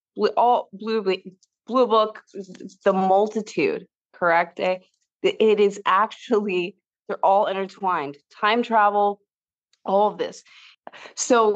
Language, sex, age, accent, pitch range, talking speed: English, female, 20-39, American, 175-210 Hz, 100 wpm